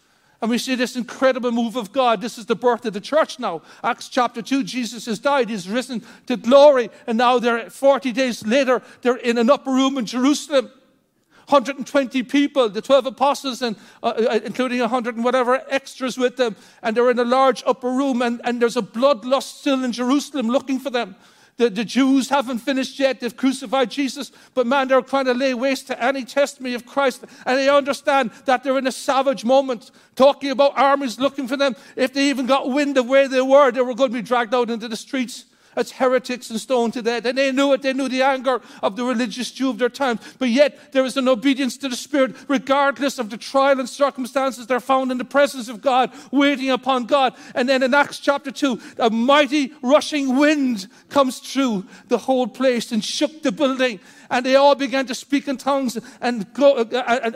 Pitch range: 245-275 Hz